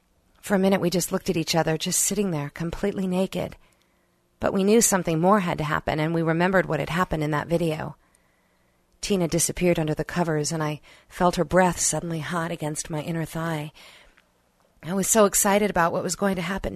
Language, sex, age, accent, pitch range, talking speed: English, female, 50-69, American, 165-200 Hz, 205 wpm